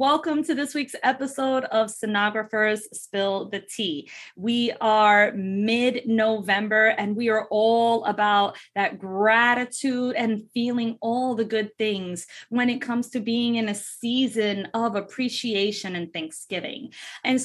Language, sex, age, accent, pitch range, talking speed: English, female, 20-39, American, 200-245 Hz, 135 wpm